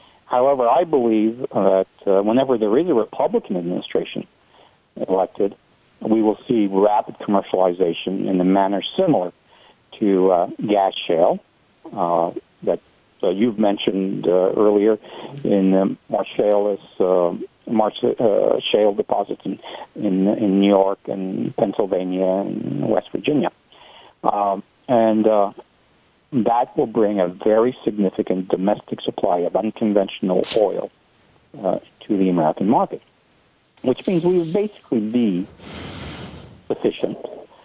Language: English